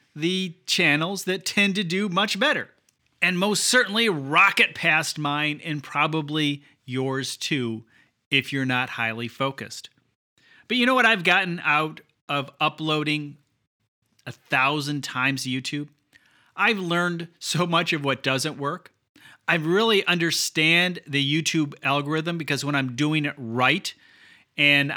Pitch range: 135-175 Hz